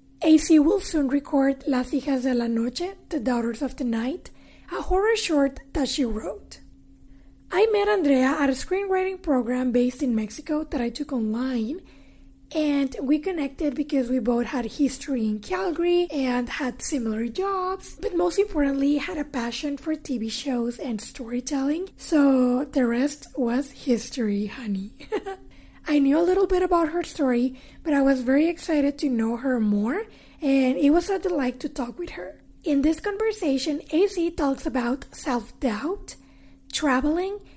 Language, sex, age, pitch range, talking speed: English, female, 20-39, 255-325 Hz, 160 wpm